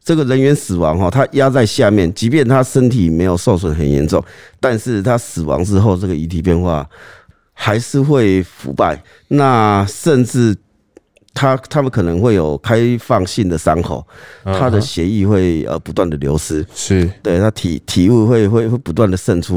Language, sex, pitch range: Chinese, male, 85-115 Hz